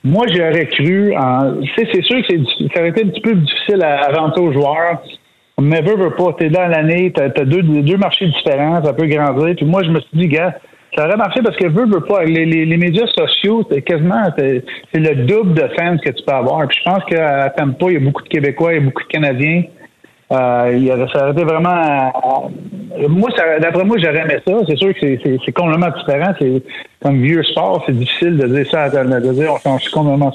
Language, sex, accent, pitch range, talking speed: French, male, Canadian, 140-170 Hz, 235 wpm